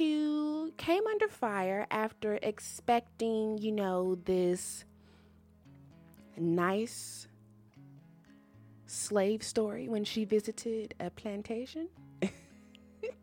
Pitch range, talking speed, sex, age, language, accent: 170-245 Hz, 75 wpm, female, 20-39, English, American